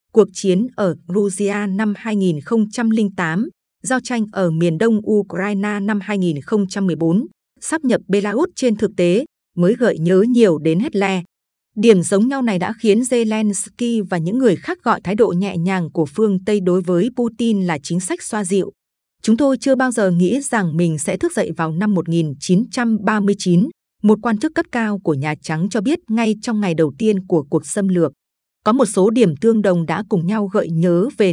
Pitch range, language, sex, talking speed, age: 185-225 Hz, Vietnamese, female, 190 wpm, 20-39